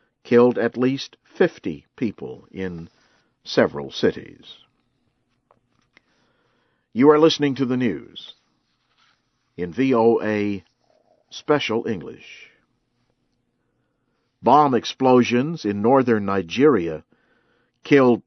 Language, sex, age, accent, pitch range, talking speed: English, male, 50-69, American, 105-130 Hz, 80 wpm